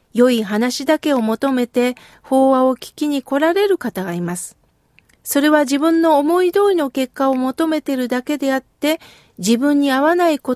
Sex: female